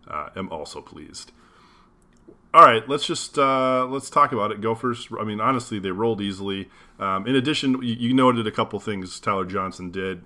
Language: English